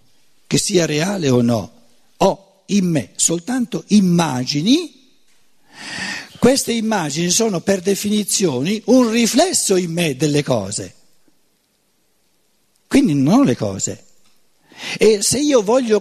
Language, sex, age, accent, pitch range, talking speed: Italian, male, 60-79, native, 145-215 Hz, 110 wpm